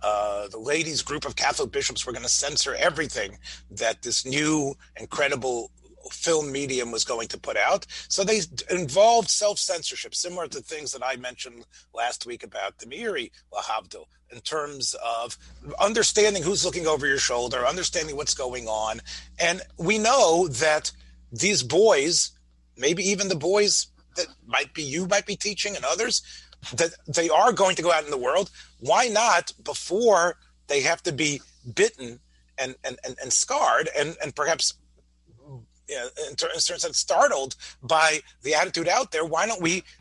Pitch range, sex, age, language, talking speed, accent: 125-205 Hz, male, 30-49, English, 165 wpm, American